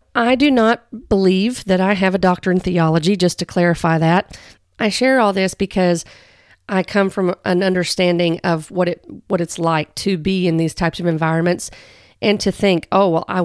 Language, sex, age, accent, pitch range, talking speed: English, female, 40-59, American, 170-200 Hz, 195 wpm